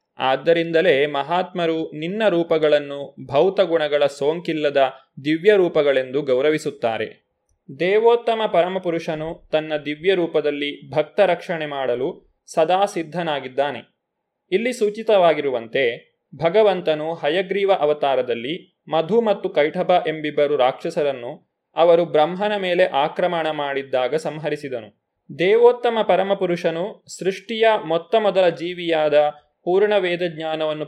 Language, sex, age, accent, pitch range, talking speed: Kannada, male, 20-39, native, 150-190 Hz, 85 wpm